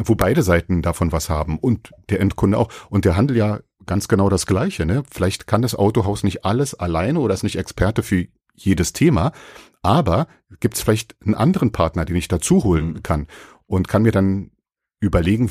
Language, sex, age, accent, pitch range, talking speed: German, male, 40-59, German, 90-120 Hz, 195 wpm